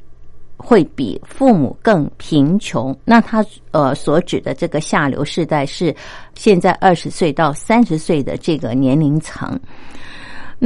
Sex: female